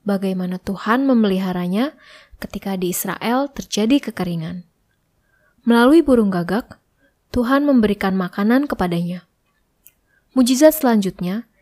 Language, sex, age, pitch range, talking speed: Indonesian, female, 20-39, 190-260 Hz, 90 wpm